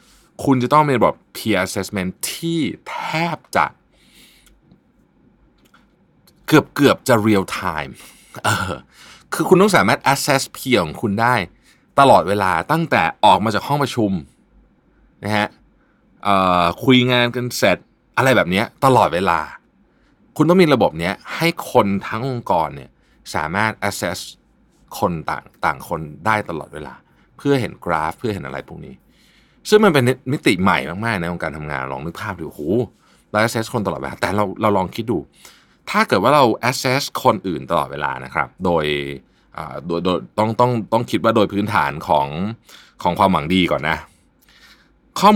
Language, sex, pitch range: Thai, male, 95-130 Hz